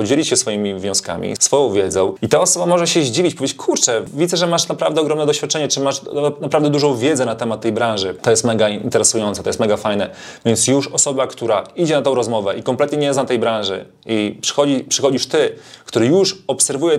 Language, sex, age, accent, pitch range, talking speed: Polish, male, 30-49, native, 110-145 Hz, 205 wpm